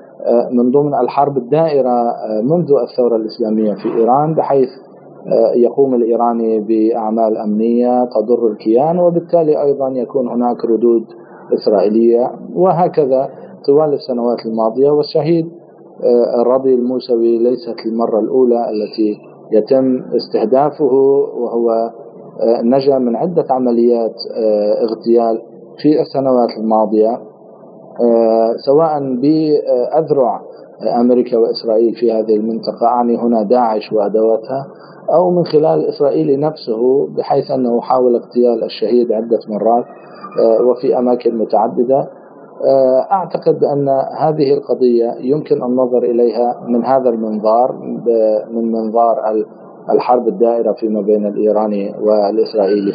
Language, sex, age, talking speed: Arabic, male, 40-59, 105 wpm